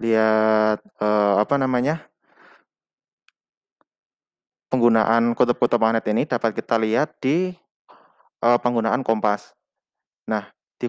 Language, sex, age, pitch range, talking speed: Indonesian, male, 20-39, 115-140 Hz, 95 wpm